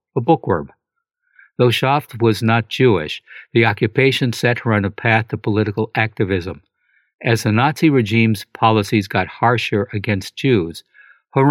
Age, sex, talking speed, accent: 60-79, male, 140 wpm, American